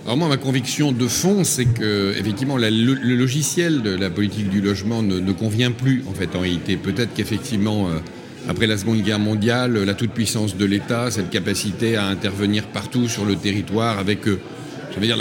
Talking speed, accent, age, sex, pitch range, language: 195 wpm, French, 50-69, male, 105-130 Hz, French